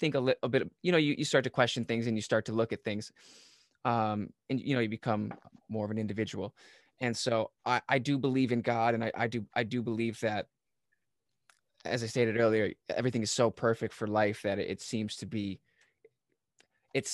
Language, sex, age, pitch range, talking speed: English, male, 20-39, 110-130 Hz, 225 wpm